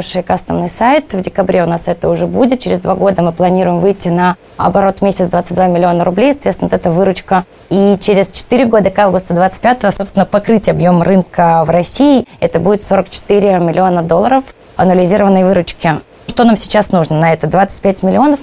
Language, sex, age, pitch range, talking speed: Russian, female, 20-39, 175-210 Hz, 170 wpm